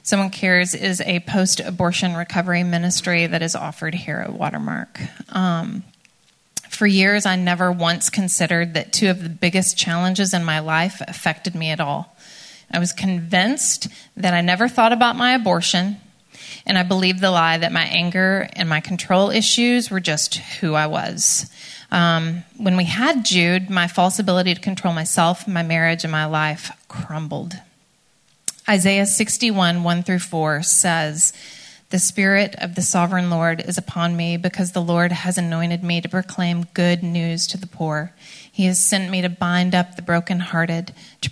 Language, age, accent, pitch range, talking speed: English, 30-49, American, 170-190 Hz, 165 wpm